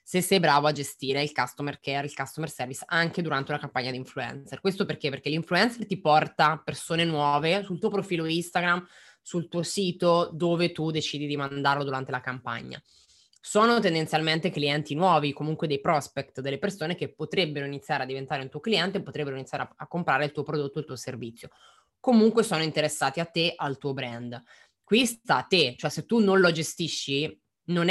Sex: female